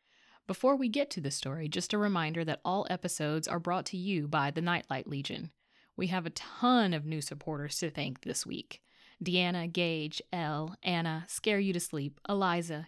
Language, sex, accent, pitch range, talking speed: English, female, American, 155-195 Hz, 185 wpm